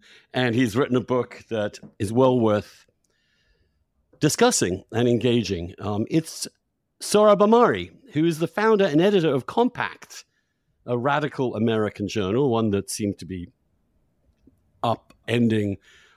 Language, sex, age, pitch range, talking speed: English, male, 50-69, 100-150 Hz, 125 wpm